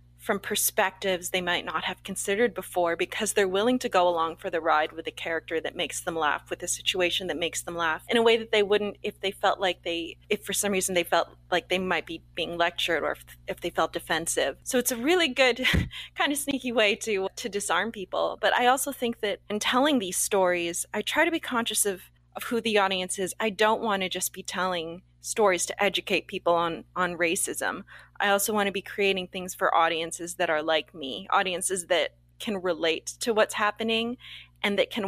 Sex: female